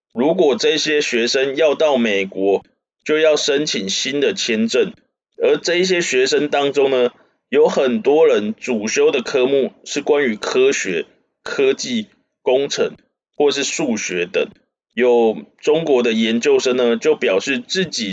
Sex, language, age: male, Chinese, 20-39